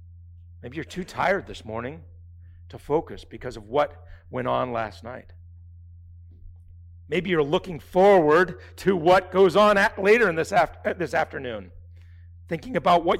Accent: American